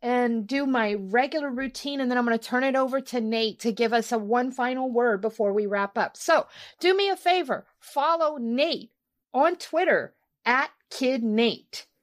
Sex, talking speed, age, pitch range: female, 185 wpm, 50-69, 225-290 Hz